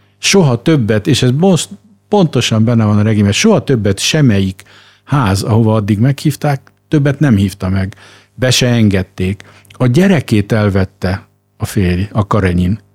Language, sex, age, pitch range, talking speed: Hungarian, male, 50-69, 100-135 Hz, 140 wpm